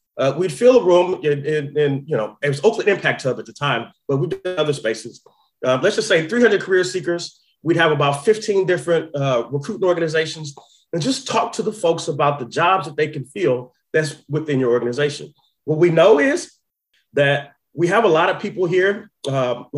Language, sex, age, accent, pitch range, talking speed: English, male, 30-49, American, 145-195 Hz, 210 wpm